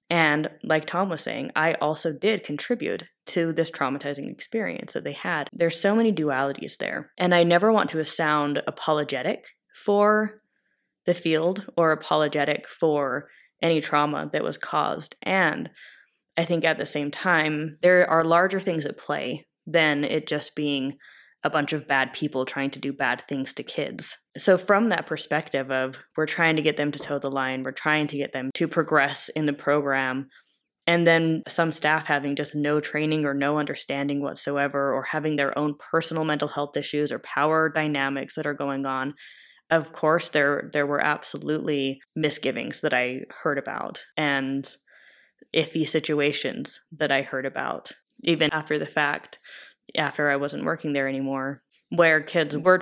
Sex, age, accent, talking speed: female, 20-39, American, 170 wpm